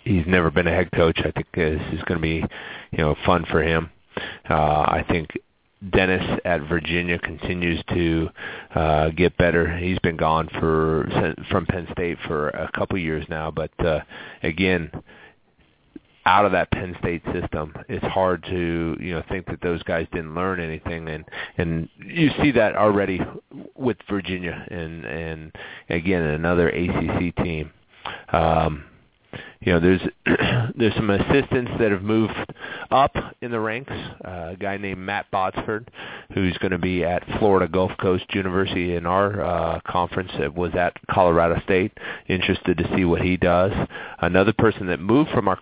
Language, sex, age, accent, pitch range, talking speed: English, male, 30-49, American, 80-95 Hz, 165 wpm